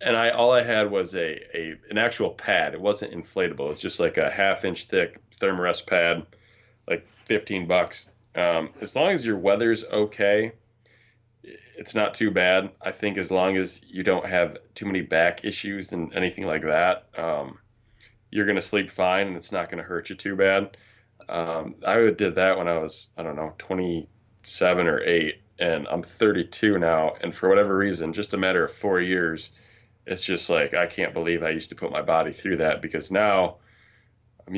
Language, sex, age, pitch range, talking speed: English, male, 20-39, 90-110 Hz, 200 wpm